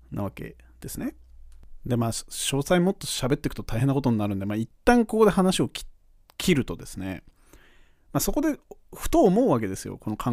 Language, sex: Japanese, male